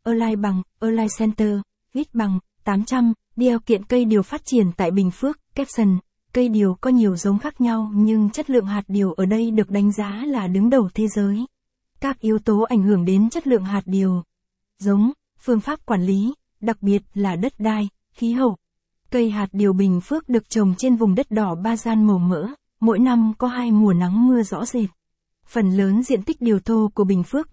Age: 20-39